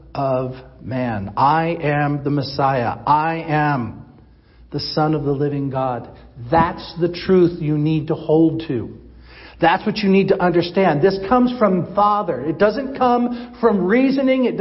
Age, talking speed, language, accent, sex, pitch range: 50-69, 150 wpm, English, American, male, 145-230 Hz